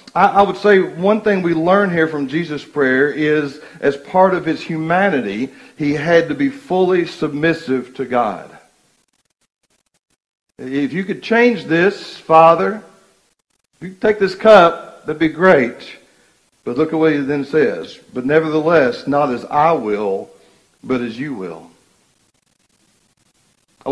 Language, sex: English, male